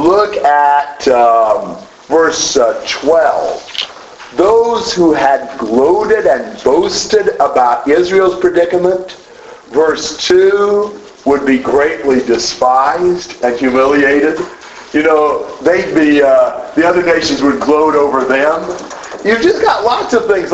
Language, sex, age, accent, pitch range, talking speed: English, male, 50-69, American, 150-245 Hz, 120 wpm